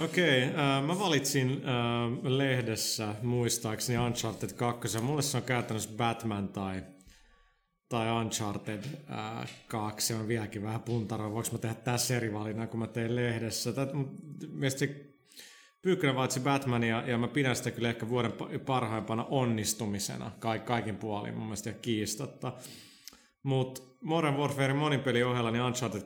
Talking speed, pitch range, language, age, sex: 150 wpm, 110-125 Hz, Finnish, 30-49, male